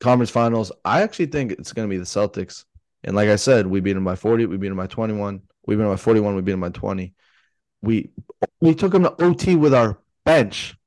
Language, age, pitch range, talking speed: English, 20-39, 95-120 Hz, 245 wpm